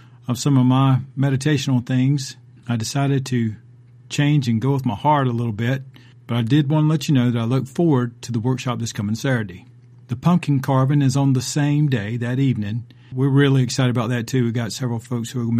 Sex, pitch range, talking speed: male, 115-130 Hz, 230 wpm